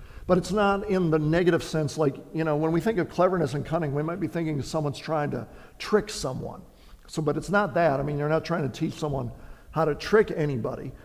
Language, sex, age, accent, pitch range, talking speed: English, male, 50-69, American, 150-180 Hz, 235 wpm